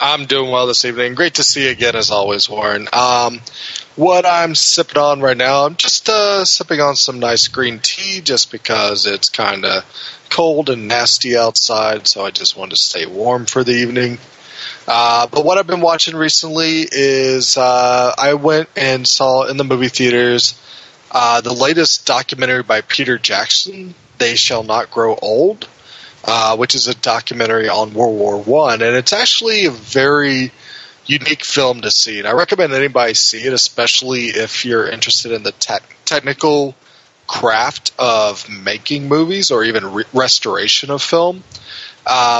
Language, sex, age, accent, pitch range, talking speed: English, male, 20-39, American, 120-150 Hz, 170 wpm